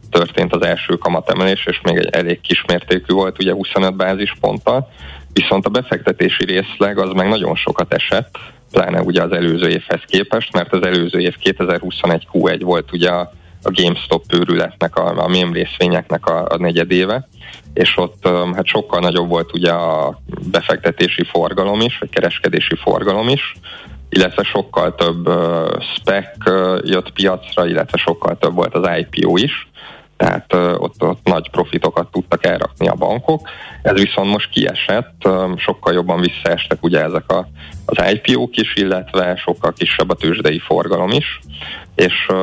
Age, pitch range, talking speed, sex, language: 20-39, 85-100 Hz, 150 wpm, male, Hungarian